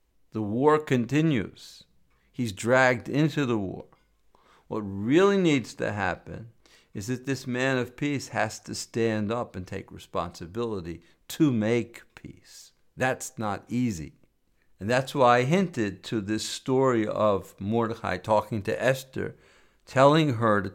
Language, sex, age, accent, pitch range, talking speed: English, male, 50-69, American, 100-130 Hz, 140 wpm